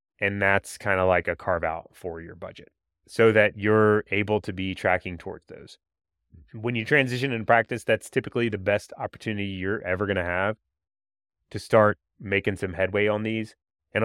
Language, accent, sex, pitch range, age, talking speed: English, American, male, 90-110 Hz, 30-49, 185 wpm